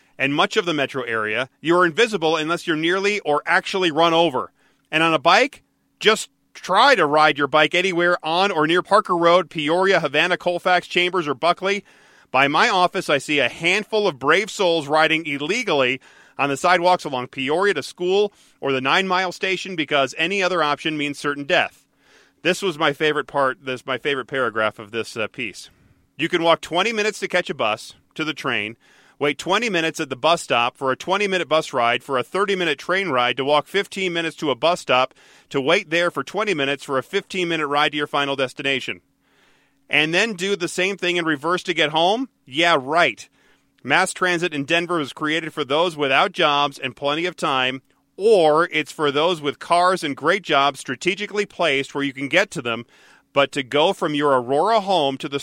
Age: 40-59